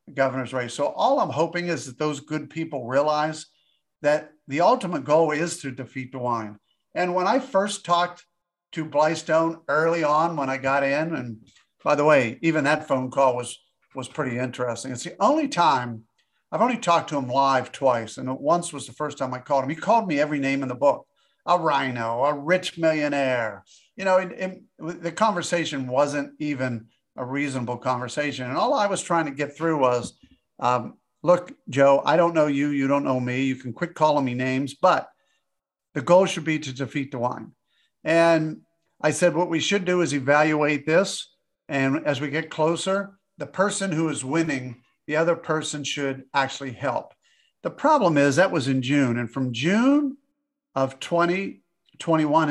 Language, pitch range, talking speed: English, 135-170 Hz, 185 wpm